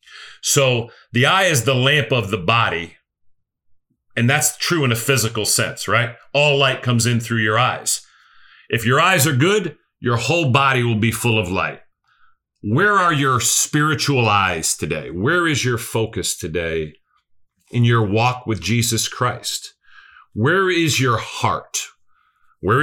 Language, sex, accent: English, male, American